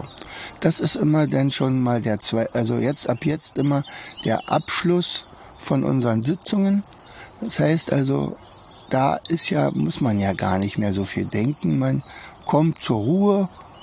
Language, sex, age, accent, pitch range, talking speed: German, male, 60-79, German, 115-155 Hz, 160 wpm